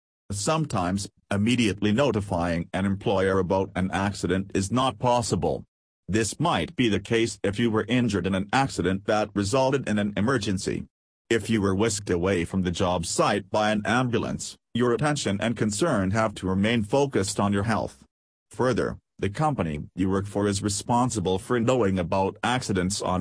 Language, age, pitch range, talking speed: English, 40-59, 95-115 Hz, 165 wpm